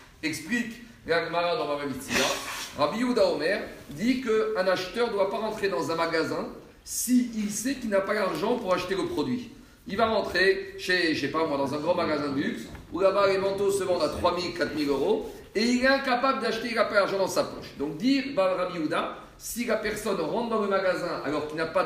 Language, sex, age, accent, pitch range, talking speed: French, male, 50-69, French, 165-240 Hz, 240 wpm